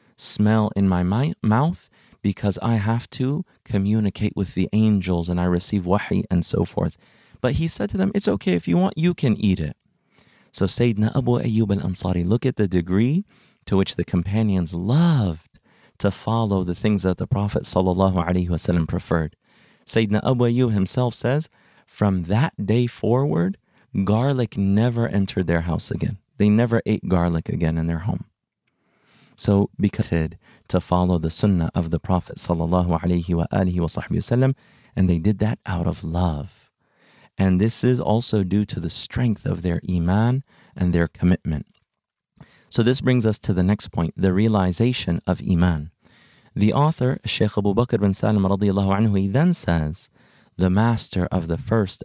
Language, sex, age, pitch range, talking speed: English, male, 30-49, 90-115 Hz, 165 wpm